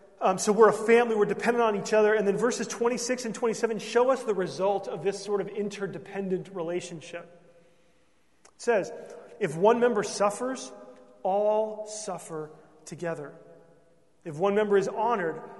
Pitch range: 155-195 Hz